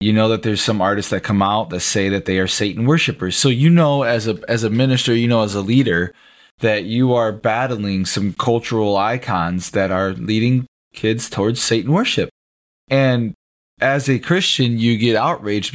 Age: 20-39